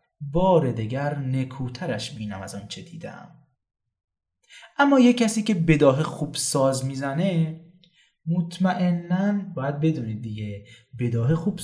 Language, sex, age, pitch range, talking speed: Persian, male, 20-39, 125-170 Hz, 110 wpm